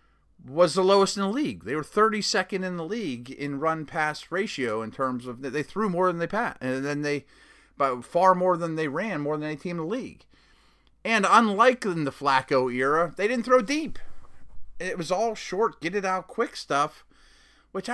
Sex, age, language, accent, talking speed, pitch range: male, 30-49, English, American, 205 wpm, 130-185 Hz